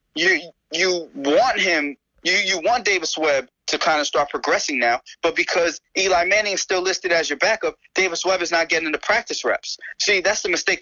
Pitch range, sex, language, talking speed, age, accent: 145-220 Hz, male, English, 205 wpm, 20-39, American